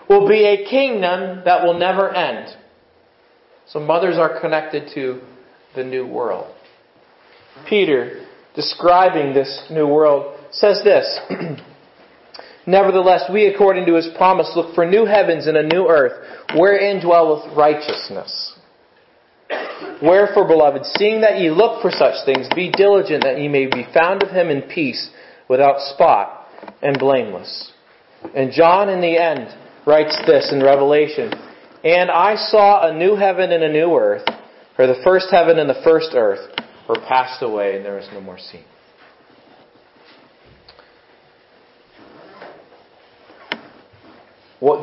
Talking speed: 135 wpm